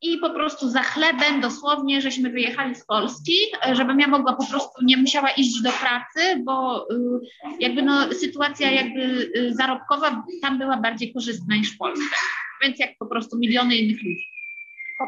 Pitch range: 240-290 Hz